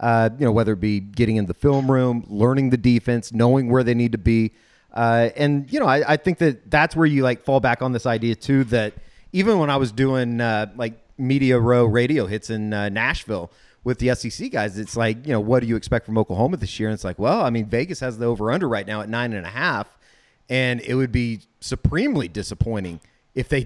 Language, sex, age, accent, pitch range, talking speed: English, male, 30-49, American, 110-130 Hz, 240 wpm